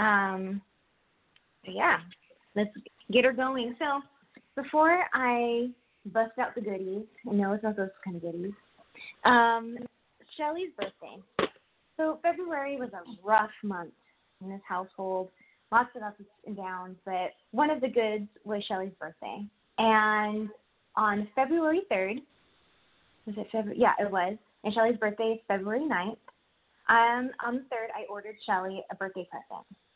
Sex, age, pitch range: female, 20-39, 200-260 Hz